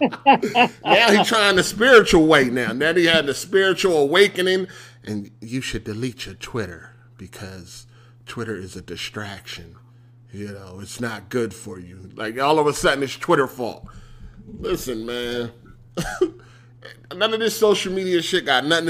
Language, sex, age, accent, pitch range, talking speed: English, male, 30-49, American, 120-180 Hz, 155 wpm